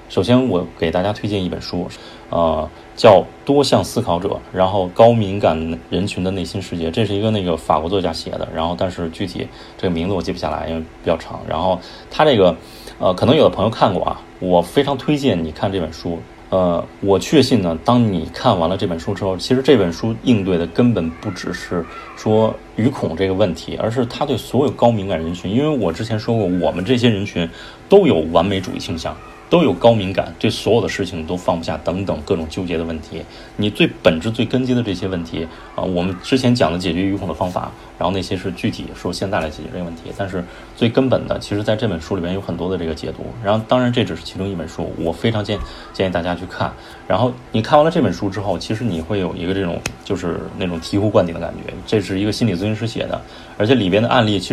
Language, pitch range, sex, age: Chinese, 85-110 Hz, male, 30-49